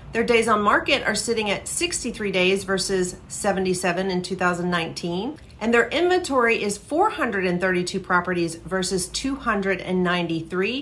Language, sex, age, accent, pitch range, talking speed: English, female, 40-59, American, 185-235 Hz, 115 wpm